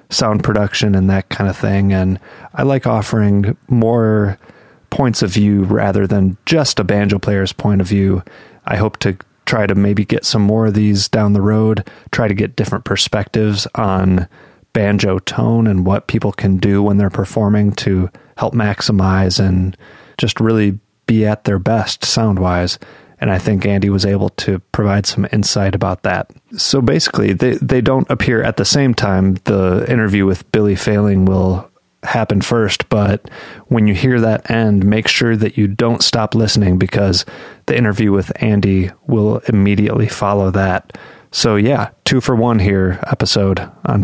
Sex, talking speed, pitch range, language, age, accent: male, 170 wpm, 100-110 Hz, English, 30-49, American